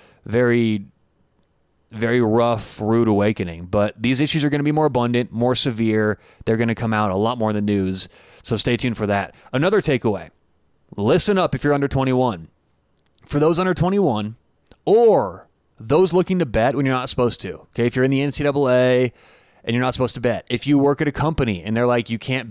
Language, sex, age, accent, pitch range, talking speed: English, male, 30-49, American, 115-150 Hz, 205 wpm